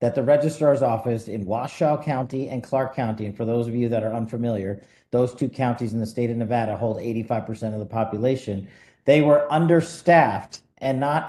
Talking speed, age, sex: 190 wpm, 40-59, male